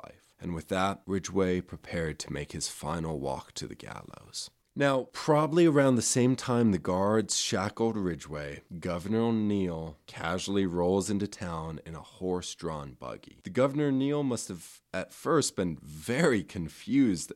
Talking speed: 150 wpm